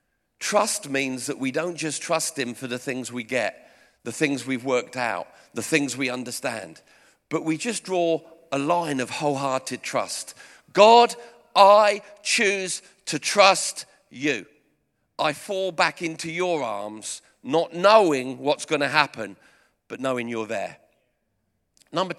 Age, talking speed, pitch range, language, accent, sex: 50-69, 145 wpm, 125-165 Hz, English, British, male